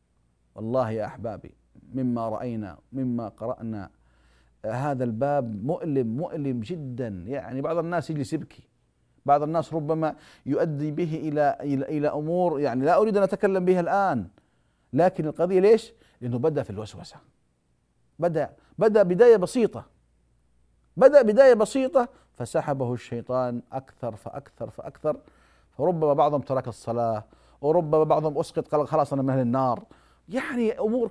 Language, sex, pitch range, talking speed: Arabic, male, 120-180 Hz, 130 wpm